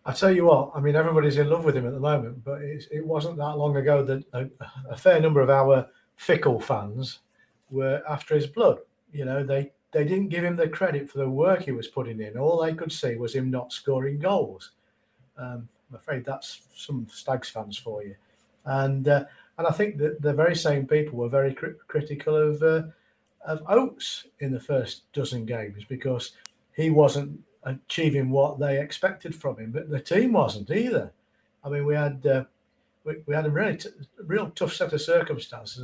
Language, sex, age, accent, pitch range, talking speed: English, male, 50-69, British, 130-160 Hz, 205 wpm